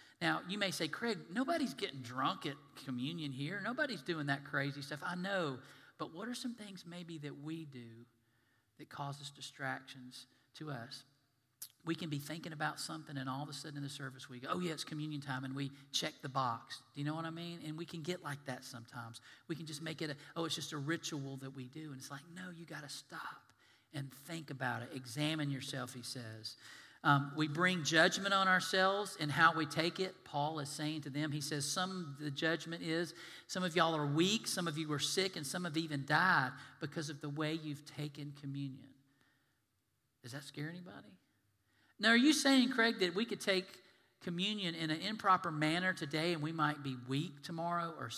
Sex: male